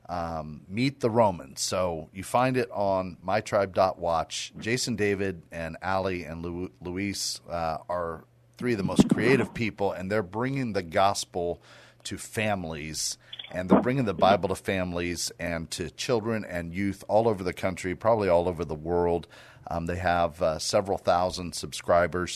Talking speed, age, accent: 155 wpm, 40-59, American